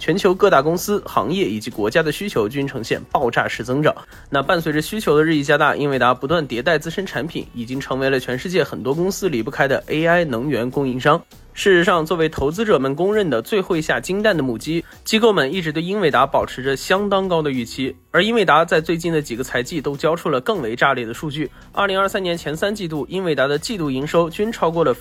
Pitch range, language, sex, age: 135-185 Hz, Chinese, male, 20-39